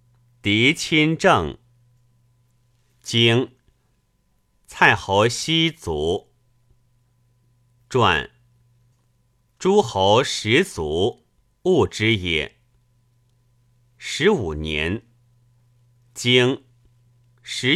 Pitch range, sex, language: 120-125 Hz, male, Chinese